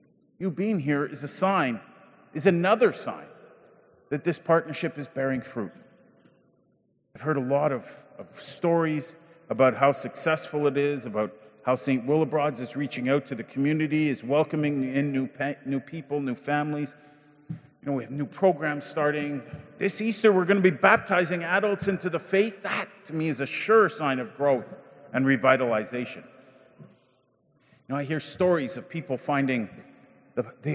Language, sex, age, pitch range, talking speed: English, male, 40-59, 135-170 Hz, 160 wpm